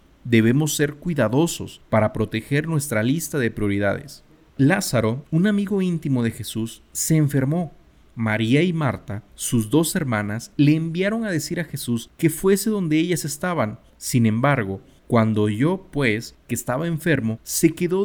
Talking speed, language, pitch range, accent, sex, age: 145 wpm, Spanish, 115-165 Hz, Mexican, male, 40-59